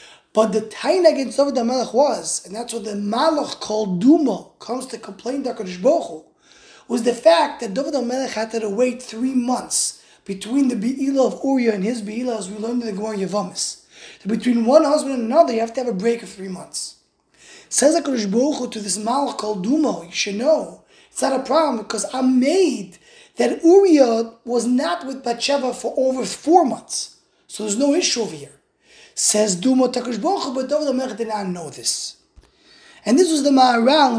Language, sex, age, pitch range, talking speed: English, male, 20-39, 220-280 Hz, 185 wpm